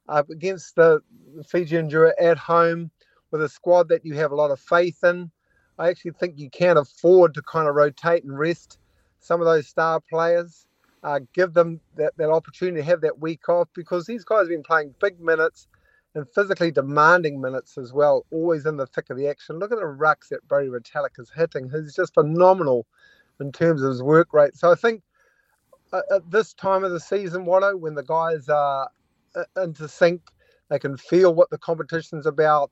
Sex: male